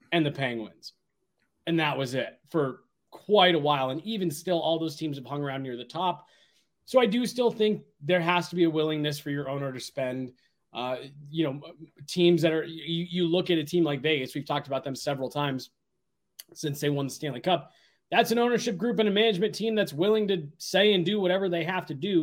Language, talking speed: English, 225 wpm